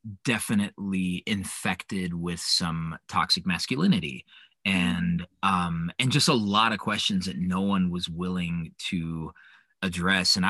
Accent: American